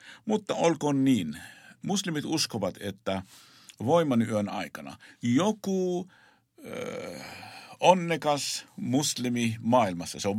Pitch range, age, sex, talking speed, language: 95-125 Hz, 50-69, male, 90 wpm, Finnish